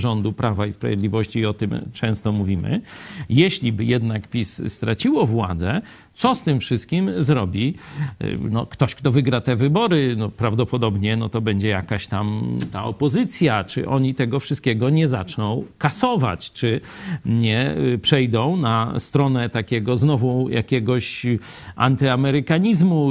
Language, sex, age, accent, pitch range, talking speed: Polish, male, 50-69, native, 115-155 Hz, 125 wpm